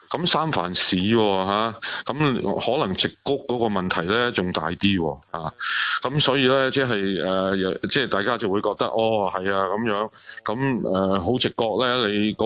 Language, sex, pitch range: Chinese, male, 90-110 Hz